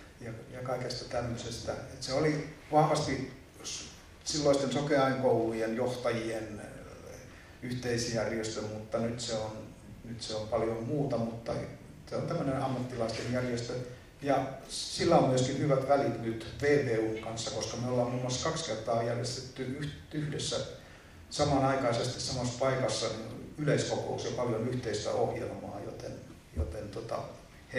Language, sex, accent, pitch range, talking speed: Finnish, male, native, 110-135 Hz, 120 wpm